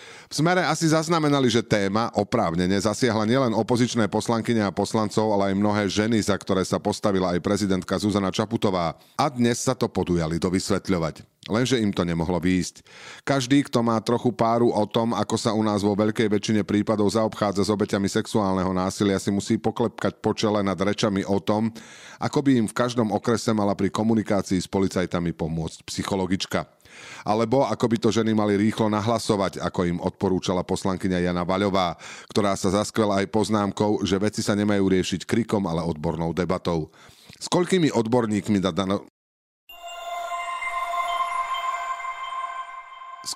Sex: male